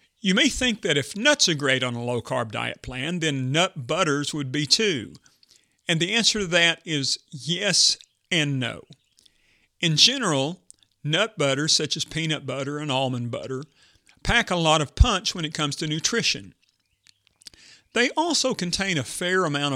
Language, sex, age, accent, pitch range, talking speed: English, male, 50-69, American, 135-170 Hz, 165 wpm